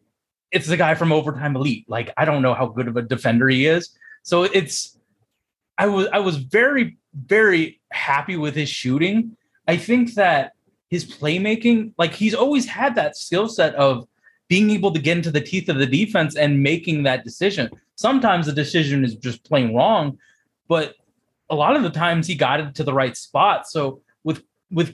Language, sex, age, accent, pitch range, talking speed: English, male, 20-39, American, 135-200 Hz, 190 wpm